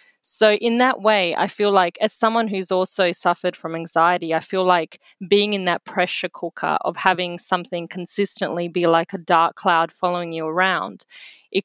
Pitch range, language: 175-205 Hz, English